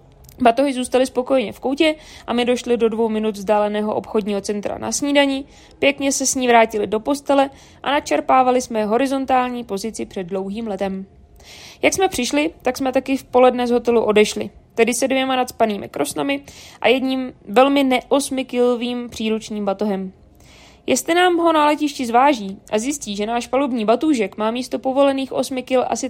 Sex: female